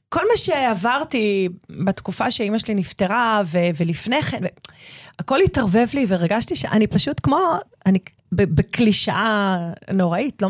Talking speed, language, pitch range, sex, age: 125 wpm, Hebrew, 170-215 Hz, female, 30-49